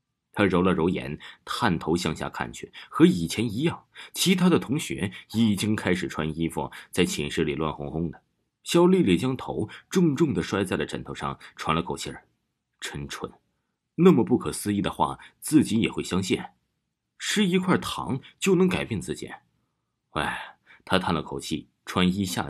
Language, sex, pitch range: Chinese, male, 80-110 Hz